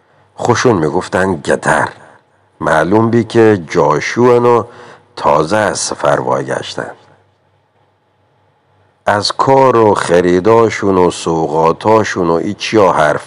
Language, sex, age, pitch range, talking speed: Persian, male, 50-69, 95-115 Hz, 90 wpm